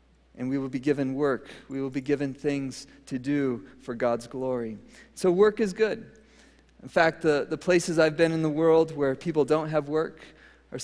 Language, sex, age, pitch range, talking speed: English, male, 40-59, 135-165 Hz, 200 wpm